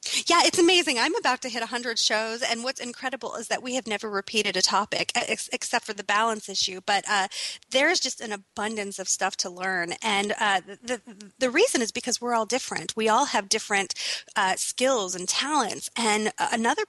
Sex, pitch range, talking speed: female, 200-265 Hz, 200 wpm